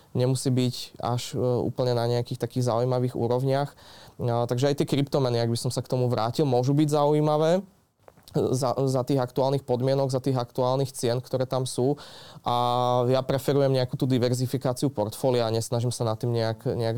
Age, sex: 20-39, male